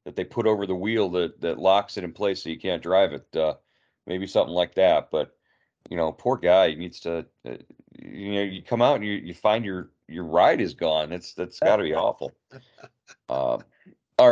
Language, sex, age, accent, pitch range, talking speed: English, male, 40-59, American, 85-105 Hz, 220 wpm